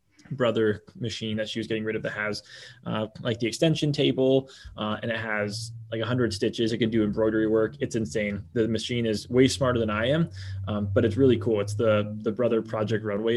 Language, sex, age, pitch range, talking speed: English, male, 20-39, 115-135 Hz, 220 wpm